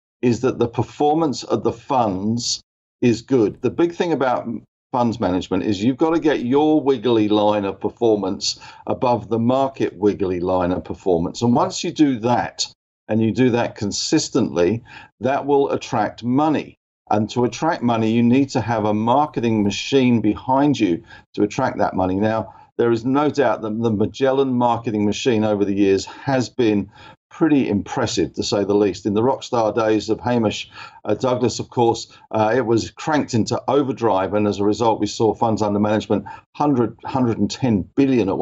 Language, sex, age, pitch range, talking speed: English, male, 50-69, 105-130 Hz, 175 wpm